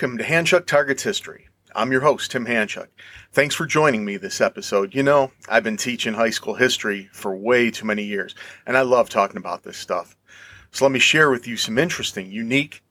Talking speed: 210 wpm